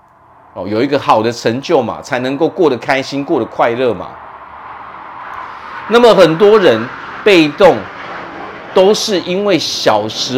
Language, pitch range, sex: Chinese, 115-170 Hz, male